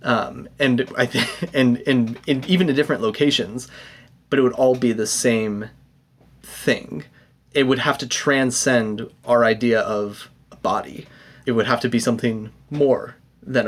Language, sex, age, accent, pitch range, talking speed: English, male, 20-39, American, 120-140 Hz, 160 wpm